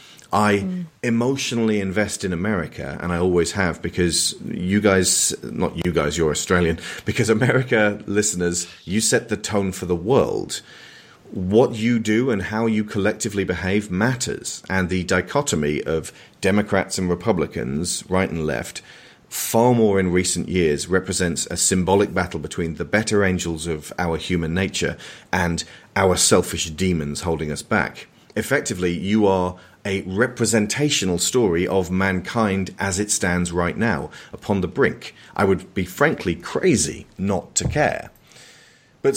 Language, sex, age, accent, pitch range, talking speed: English, male, 40-59, British, 85-105 Hz, 145 wpm